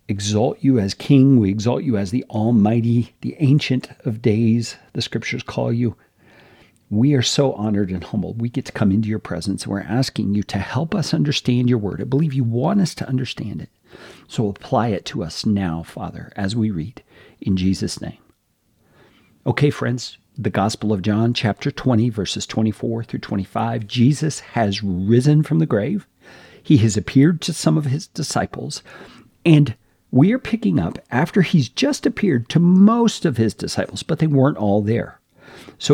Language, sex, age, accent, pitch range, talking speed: English, male, 50-69, American, 105-150 Hz, 180 wpm